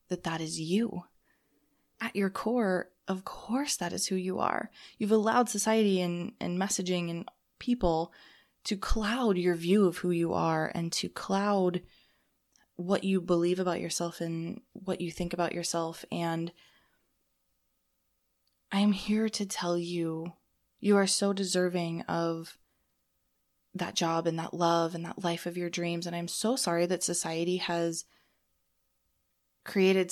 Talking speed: 145 wpm